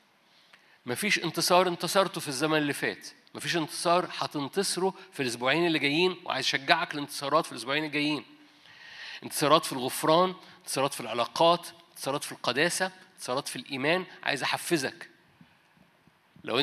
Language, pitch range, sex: Arabic, 140-175 Hz, male